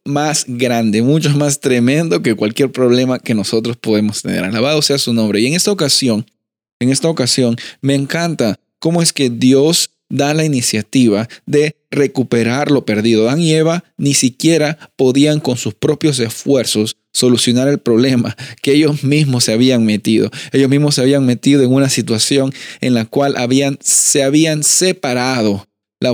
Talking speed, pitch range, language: 165 wpm, 120-150 Hz, Spanish